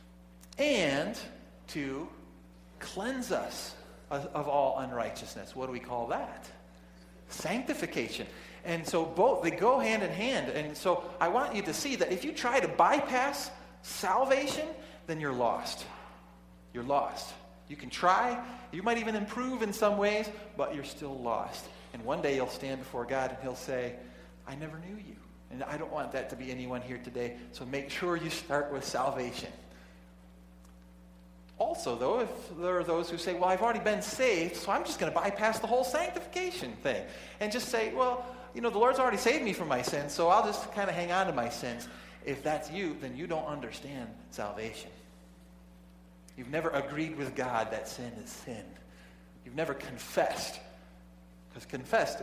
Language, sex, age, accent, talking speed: English, male, 40-59, American, 180 wpm